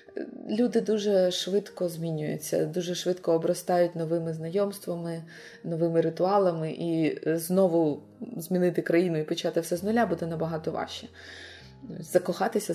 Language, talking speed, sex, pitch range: Ukrainian, 115 wpm, female, 170-205 Hz